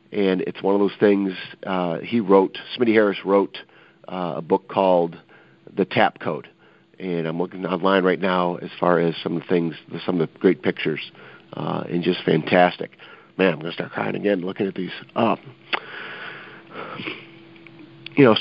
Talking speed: 175 wpm